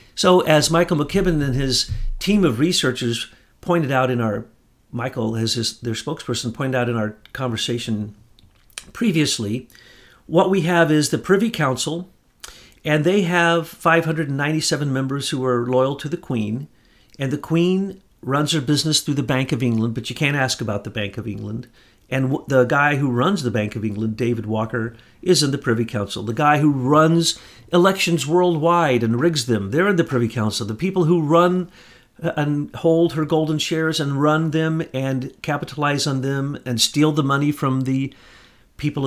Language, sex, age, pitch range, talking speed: English, male, 50-69, 115-160 Hz, 185 wpm